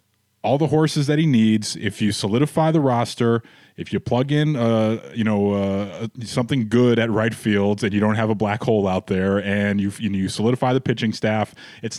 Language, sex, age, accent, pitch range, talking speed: English, male, 20-39, American, 105-125 Hz, 210 wpm